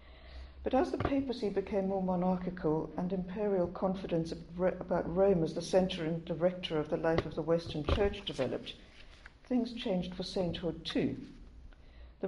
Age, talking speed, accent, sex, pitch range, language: 60-79, 150 wpm, British, female, 150-190 Hz, English